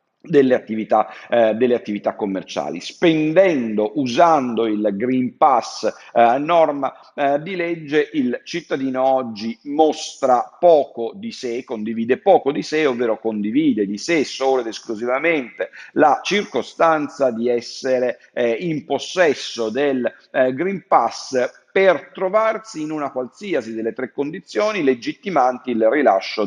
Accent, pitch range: native, 115-165 Hz